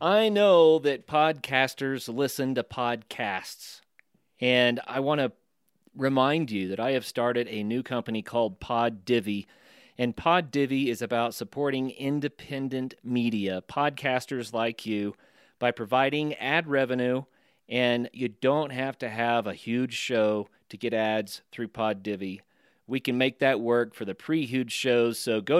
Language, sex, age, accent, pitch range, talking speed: English, male, 40-59, American, 115-150 Hz, 150 wpm